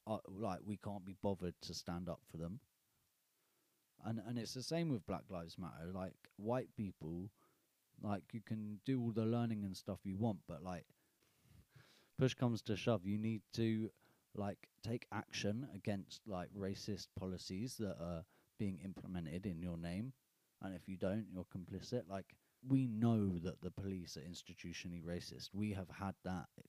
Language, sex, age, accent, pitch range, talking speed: English, male, 30-49, British, 85-105 Hz, 170 wpm